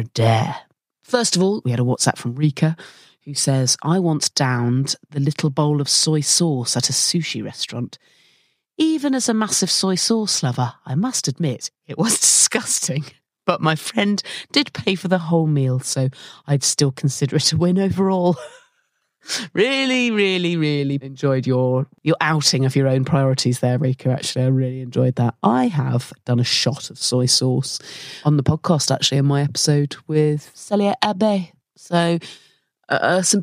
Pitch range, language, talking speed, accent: 130-185 Hz, English, 170 wpm, British